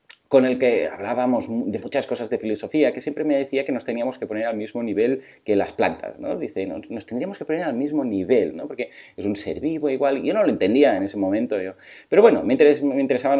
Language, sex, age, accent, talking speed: Spanish, male, 30-49, Spanish, 230 wpm